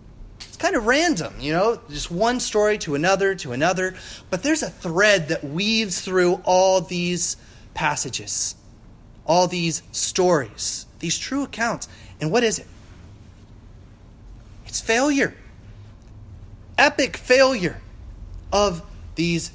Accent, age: American, 30-49